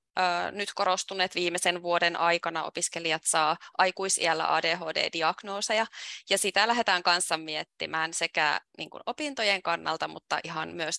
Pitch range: 170-205 Hz